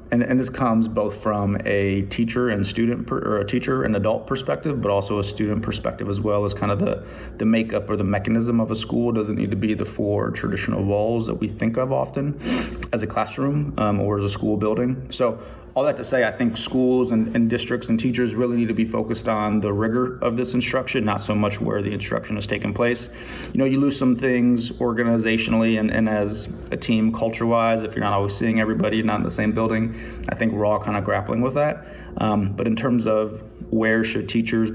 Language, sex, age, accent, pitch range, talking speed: English, male, 30-49, American, 105-120 Hz, 230 wpm